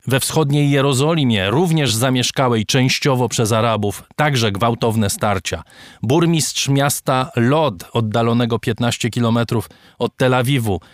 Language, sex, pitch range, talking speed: Polish, male, 120-140 Hz, 110 wpm